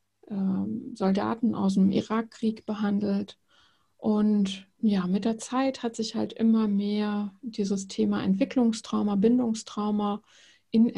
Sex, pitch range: female, 195-220 Hz